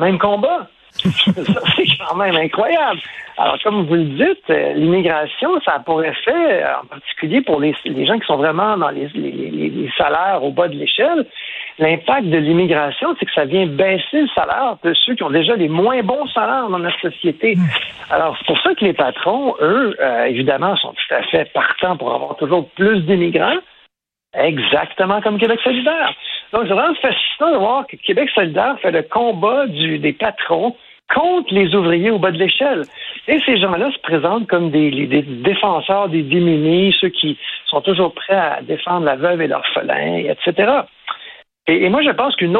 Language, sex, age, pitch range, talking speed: French, male, 60-79, 160-220 Hz, 185 wpm